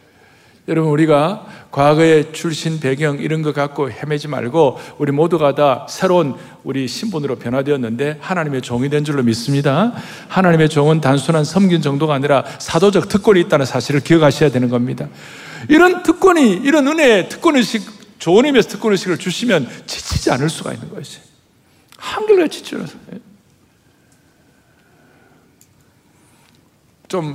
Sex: male